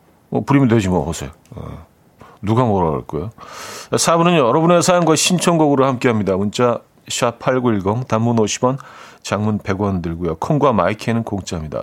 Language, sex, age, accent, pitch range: Korean, male, 40-59, native, 110-145 Hz